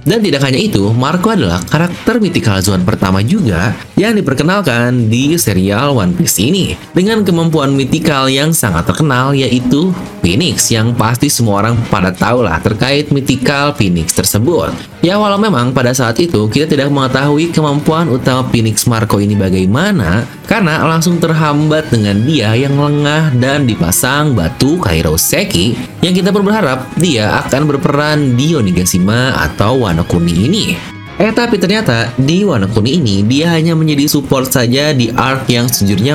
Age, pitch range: 20-39, 115-155 Hz